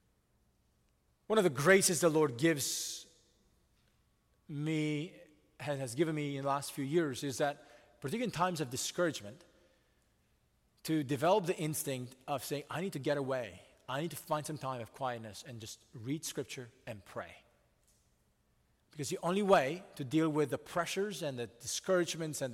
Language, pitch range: English, 130-175 Hz